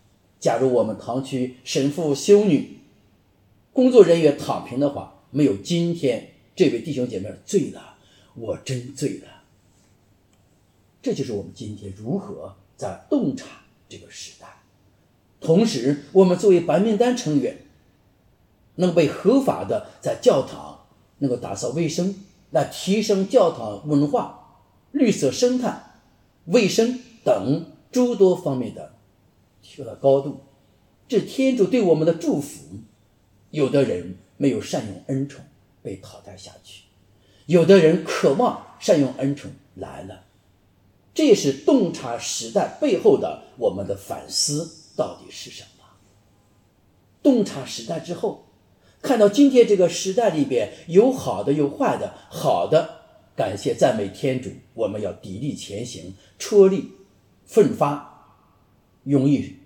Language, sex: English, male